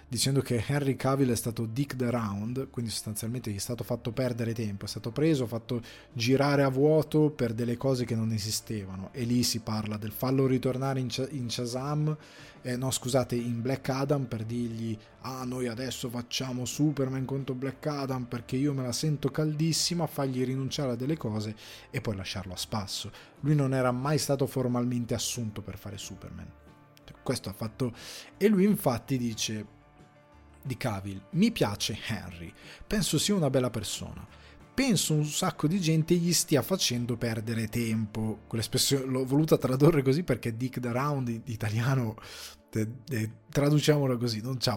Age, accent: 20-39, native